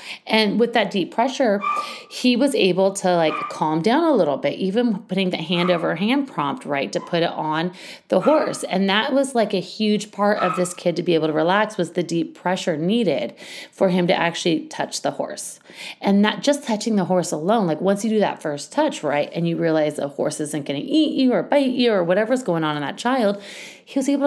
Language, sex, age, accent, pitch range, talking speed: English, female, 30-49, American, 165-230 Hz, 230 wpm